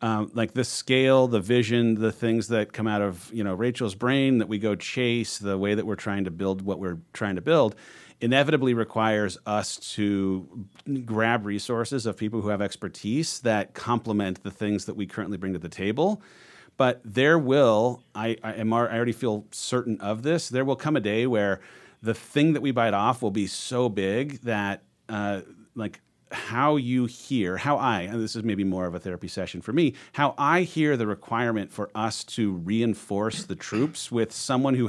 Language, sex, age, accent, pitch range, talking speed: English, male, 40-59, American, 105-125 Hz, 200 wpm